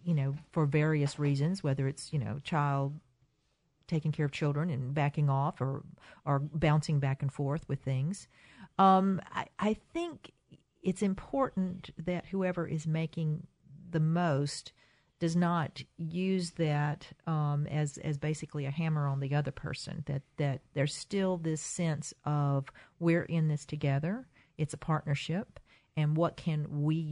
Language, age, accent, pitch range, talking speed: English, 50-69, American, 140-170 Hz, 155 wpm